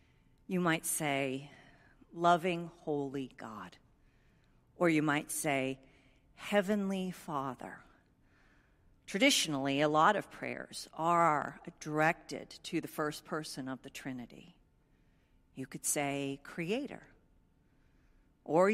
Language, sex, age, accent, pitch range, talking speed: English, female, 50-69, American, 145-215 Hz, 100 wpm